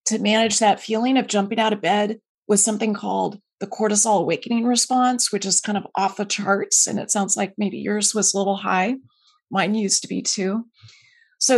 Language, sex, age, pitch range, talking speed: English, female, 30-49, 200-255 Hz, 200 wpm